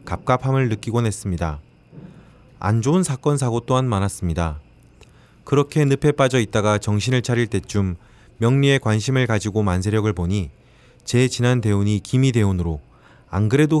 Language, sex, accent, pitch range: Korean, male, native, 95-125 Hz